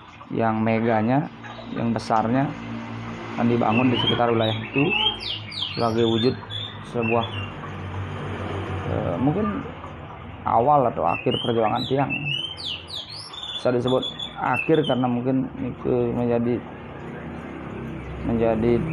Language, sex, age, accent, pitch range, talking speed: Indonesian, male, 20-39, native, 110-130 Hz, 90 wpm